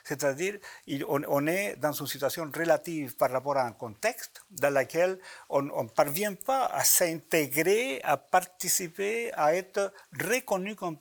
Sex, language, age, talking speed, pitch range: male, French, 60-79, 140 wpm, 145-195 Hz